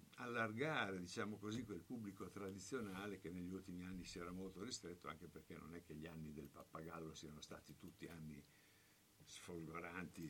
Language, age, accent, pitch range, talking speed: Italian, 60-79, native, 80-95 Hz, 165 wpm